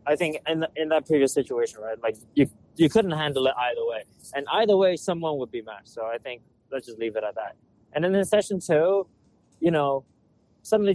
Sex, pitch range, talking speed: male, 115-170 Hz, 225 wpm